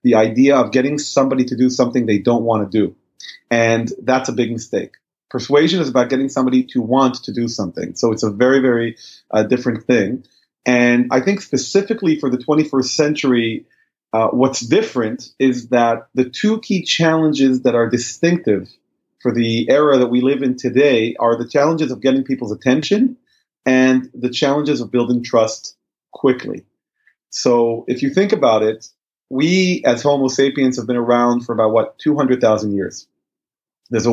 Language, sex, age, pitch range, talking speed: English, male, 30-49, 120-140 Hz, 170 wpm